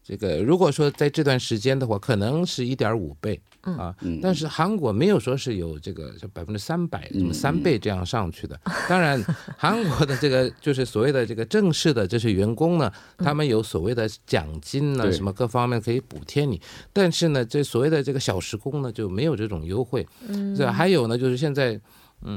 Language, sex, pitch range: Korean, male, 110-155 Hz